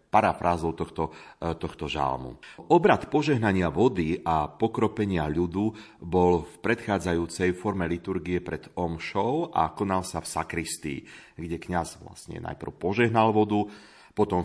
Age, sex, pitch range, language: 40-59, male, 80-110 Hz, Slovak